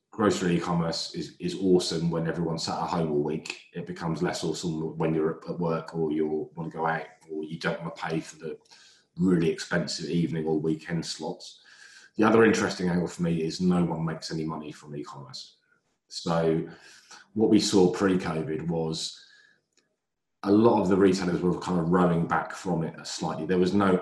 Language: English